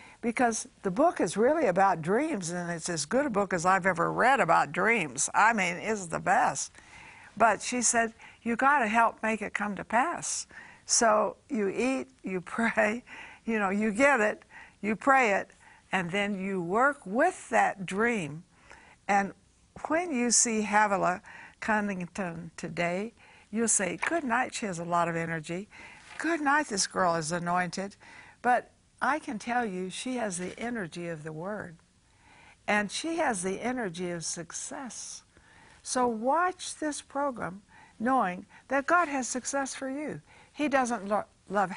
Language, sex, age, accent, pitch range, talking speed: English, female, 60-79, American, 180-250 Hz, 160 wpm